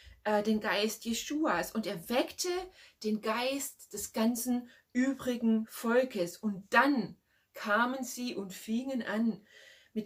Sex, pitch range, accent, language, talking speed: female, 210-255 Hz, German, German, 120 wpm